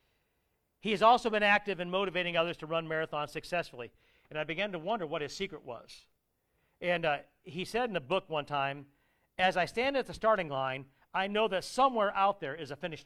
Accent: American